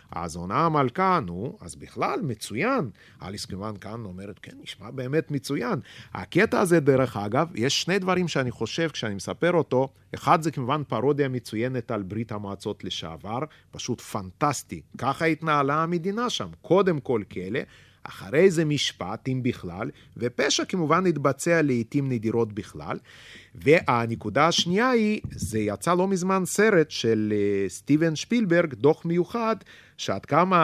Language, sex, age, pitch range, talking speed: Hebrew, male, 30-49, 110-160 Hz, 140 wpm